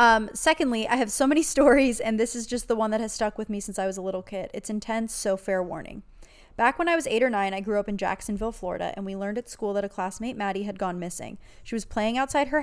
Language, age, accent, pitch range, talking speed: English, 20-39, American, 195-235 Hz, 280 wpm